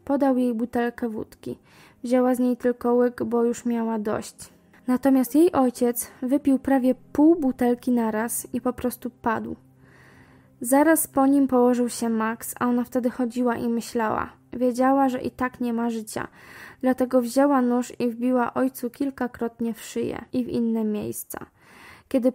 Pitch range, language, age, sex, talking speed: 235-255 Hz, Polish, 10-29, female, 155 wpm